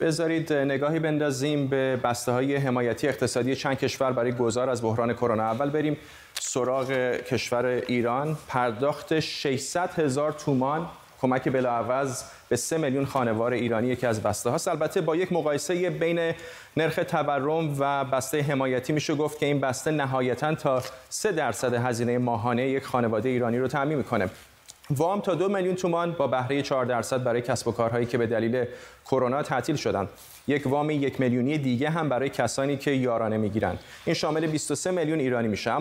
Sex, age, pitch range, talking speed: male, 30-49, 125-155 Hz, 165 wpm